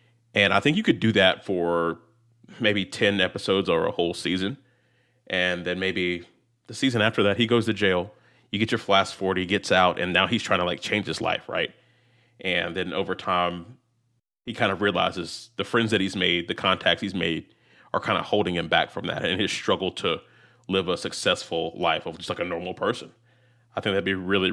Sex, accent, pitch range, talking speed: male, American, 95-120 Hz, 215 wpm